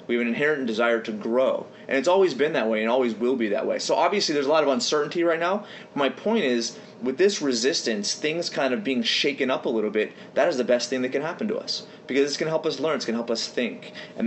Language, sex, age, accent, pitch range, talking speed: English, male, 30-49, American, 115-150 Hz, 285 wpm